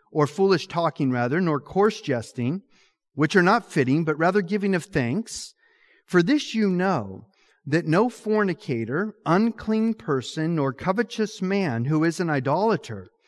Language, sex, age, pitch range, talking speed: English, male, 40-59, 145-210 Hz, 145 wpm